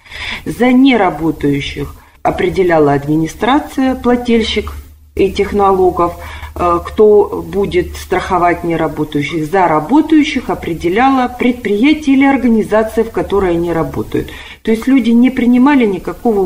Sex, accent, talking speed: female, native, 100 wpm